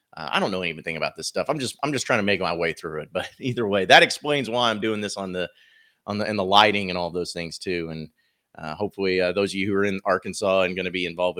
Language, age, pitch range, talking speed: English, 30-49, 95-120 Hz, 290 wpm